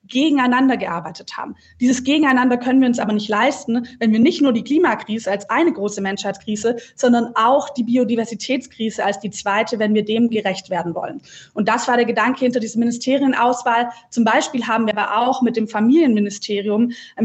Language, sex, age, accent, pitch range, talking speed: German, female, 20-39, German, 220-260 Hz, 180 wpm